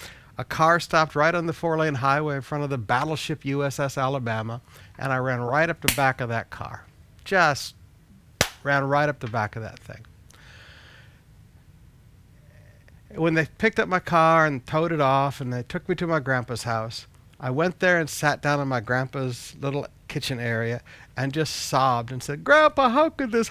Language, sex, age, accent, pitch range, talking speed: English, male, 60-79, American, 120-170 Hz, 185 wpm